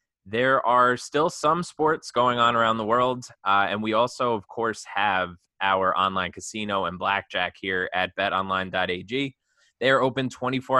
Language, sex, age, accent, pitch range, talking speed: English, male, 20-39, American, 95-120 Hz, 155 wpm